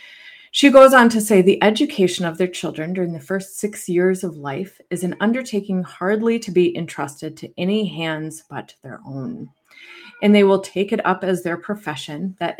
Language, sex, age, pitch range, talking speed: English, female, 30-49, 165-205 Hz, 190 wpm